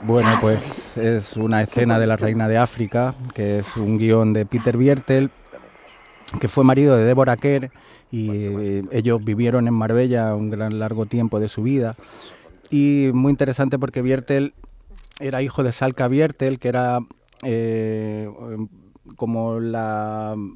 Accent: Spanish